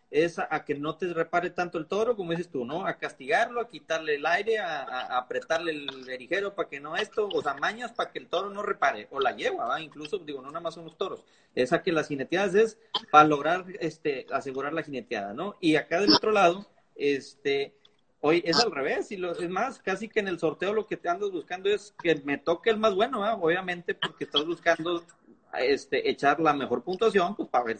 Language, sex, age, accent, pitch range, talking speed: Spanish, male, 30-49, Mexican, 160-225 Hz, 230 wpm